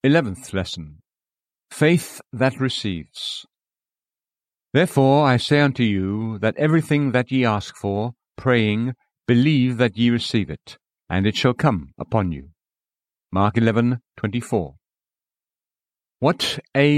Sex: male